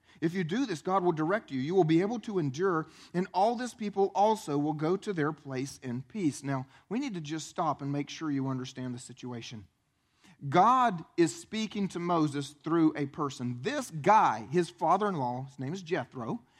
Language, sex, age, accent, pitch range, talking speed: English, male, 40-59, American, 160-255 Hz, 205 wpm